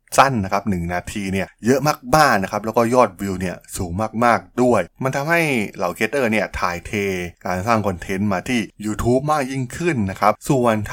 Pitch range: 95-125 Hz